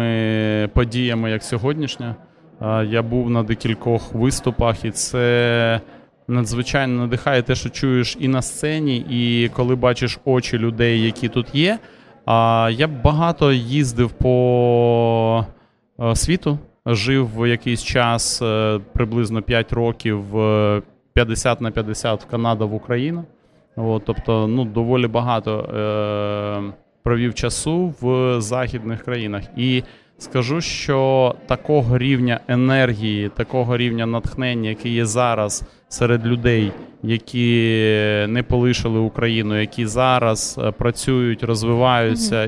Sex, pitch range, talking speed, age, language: male, 115-125 Hz, 105 wpm, 20-39, Ukrainian